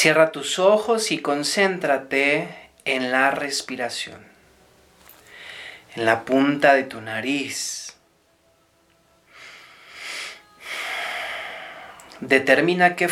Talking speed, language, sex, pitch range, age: 75 wpm, Spanish, male, 130-165 Hz, 40-59